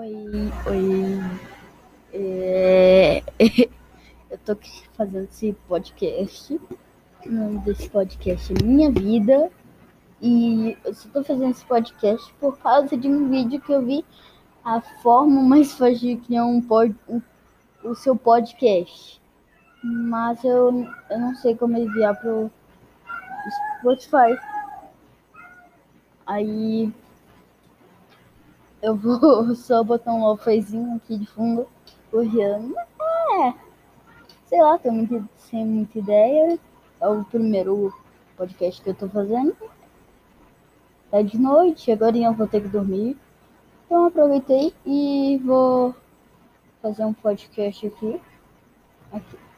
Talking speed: 115 wpm